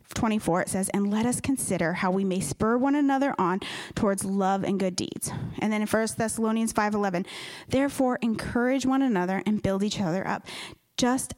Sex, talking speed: female, 190 wpm